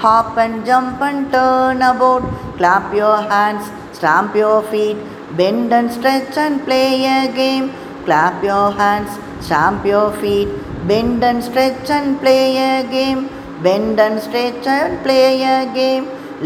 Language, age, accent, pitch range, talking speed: Tamil, 20-39, native, 205-260 Hz, 140 wpm